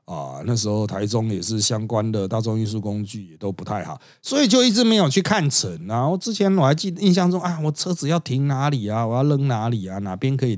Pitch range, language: 115-180 Hz, Chinese